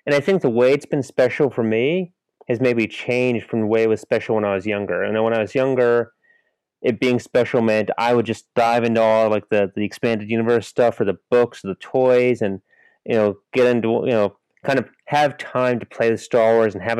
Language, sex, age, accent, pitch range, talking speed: English, male, 30-49, American, 110-130 Hz, 245 wpm